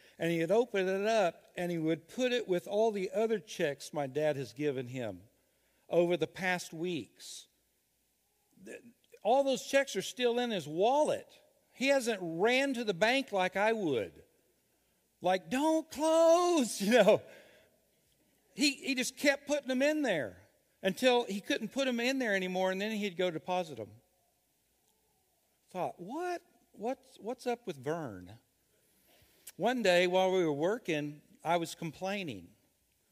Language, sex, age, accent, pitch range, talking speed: English, male, 60-79, American, 155-230 Hz, 155 wpm